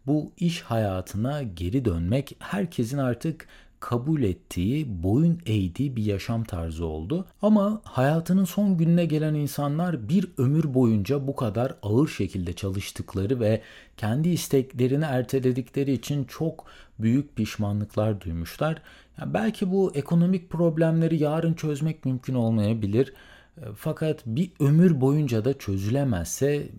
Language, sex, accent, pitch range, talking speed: Turkish, male, native, 110-160 Hz, 120 wpm